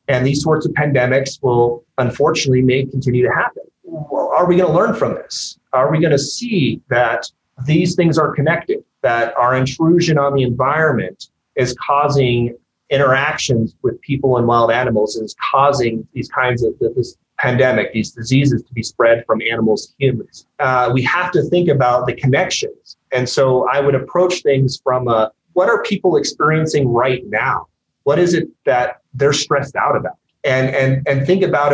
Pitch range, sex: 120-145 Hz, male